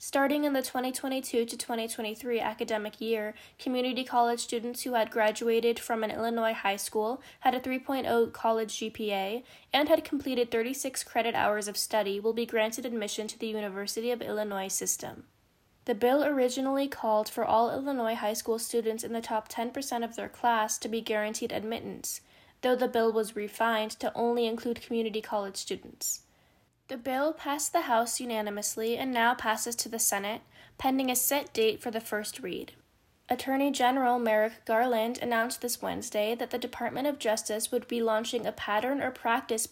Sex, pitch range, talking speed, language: female, 220-255 Hz, 170 wpm, English